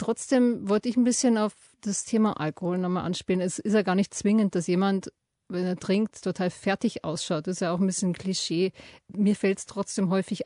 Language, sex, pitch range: German, female, 190-230 Hz